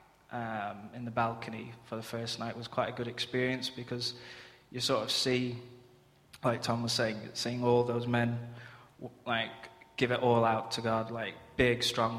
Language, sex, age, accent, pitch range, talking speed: English, male, 20-39, British, 115-135 Hz, 175 wpm